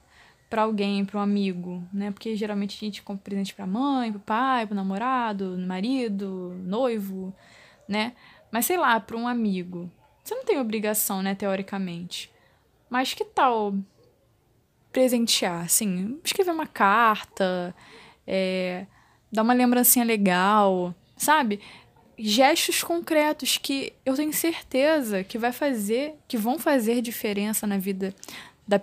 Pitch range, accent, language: 200-255 Hz, Brazilian, Portuguese